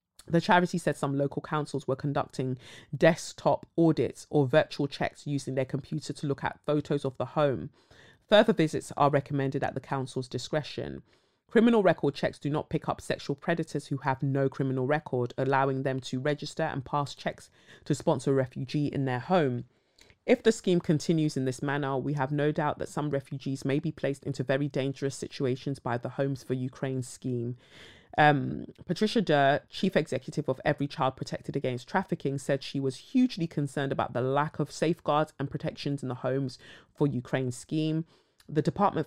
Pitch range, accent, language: 135-155 Hz, British, English